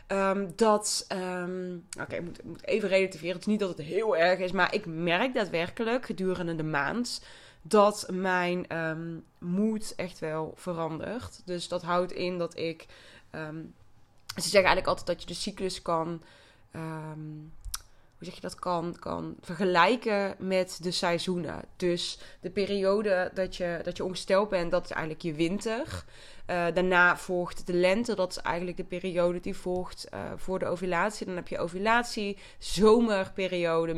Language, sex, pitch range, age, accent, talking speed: Dutch, female, 170-200 Hz, 20-39, Dutch, 165 wpm